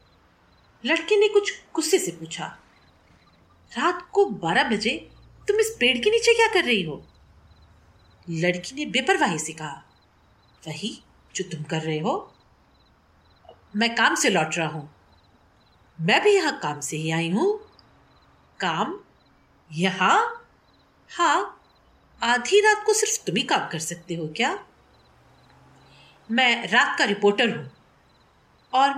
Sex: female